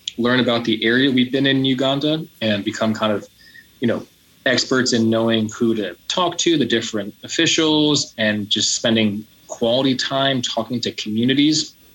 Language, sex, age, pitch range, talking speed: English, male, 20-39, 105-125 Hz, 160 wpm